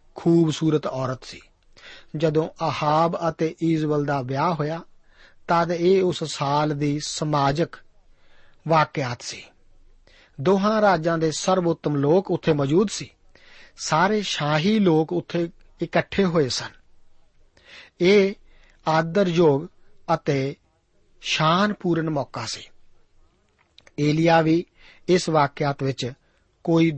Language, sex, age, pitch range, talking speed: Punjabi, male, 50-69, 145-175 Hz, 100 wpm